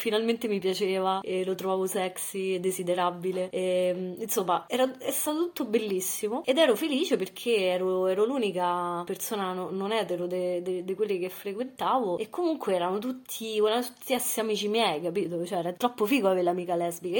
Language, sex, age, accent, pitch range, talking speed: Italian, female, 20-39, native, 185-225 Hz, 160 wpm